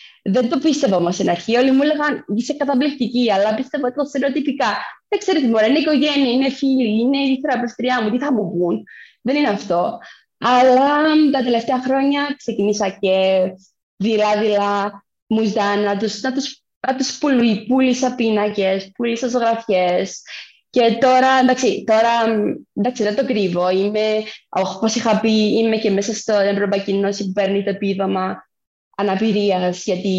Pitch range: 195-250 Hz